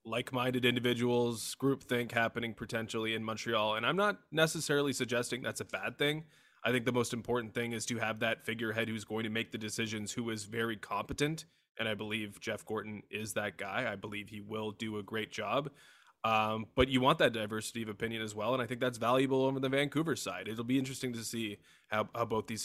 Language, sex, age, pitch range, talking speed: English, male, 20-39, 105-120 Hz, 215 wpm